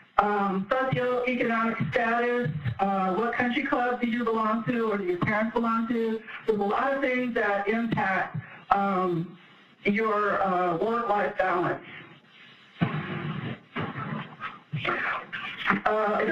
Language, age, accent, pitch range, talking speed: English, 50-69, American, 195-235 Hz, 125 wpm